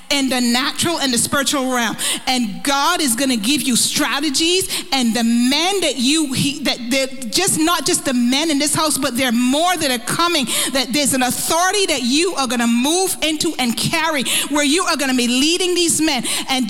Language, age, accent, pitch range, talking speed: English, 40-59, American, 270-335 Hz, 215 wpm